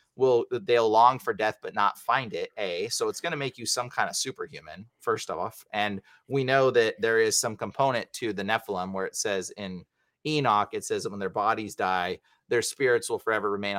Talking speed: 215 wpm